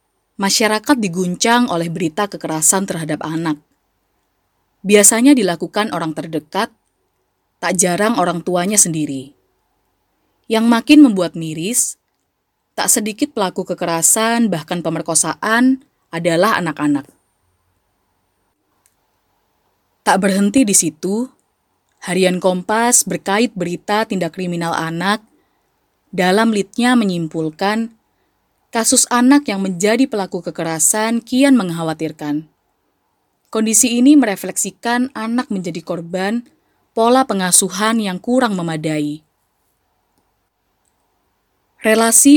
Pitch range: 165-220 Hz